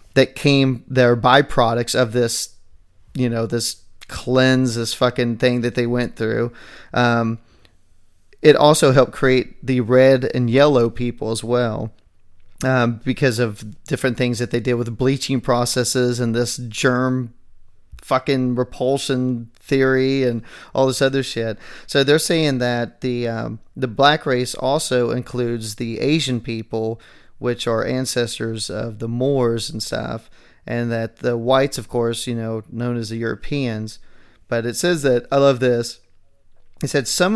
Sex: male